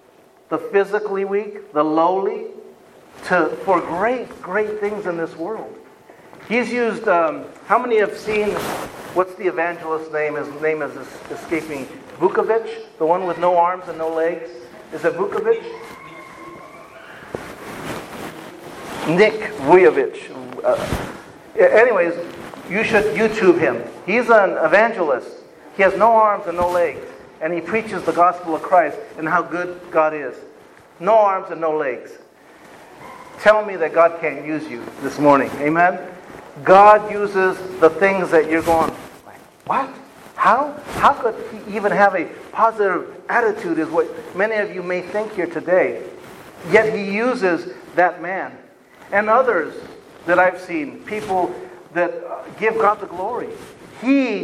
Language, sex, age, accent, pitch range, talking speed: English, male, 50-69, American, 170-225 Hz, 140 wpm